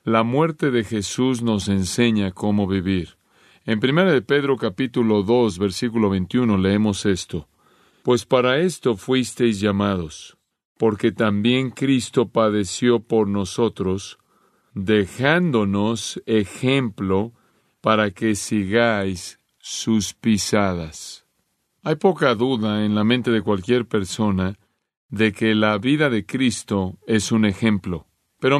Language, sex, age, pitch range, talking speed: Spanish, male, 40-59, 105-135 Hz, 115 wpm